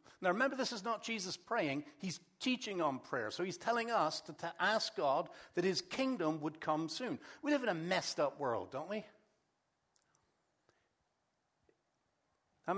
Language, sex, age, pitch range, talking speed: English, male, 60-79, 165-245 Hz, 165 wpm